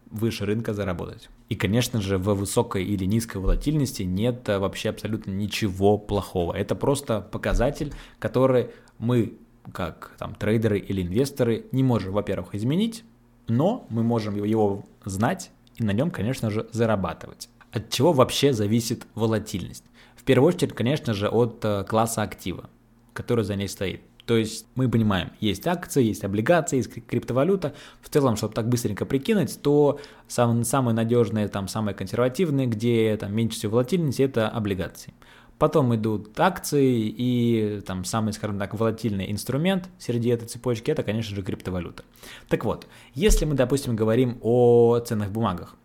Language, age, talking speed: Russian, 20-39, 145 wpm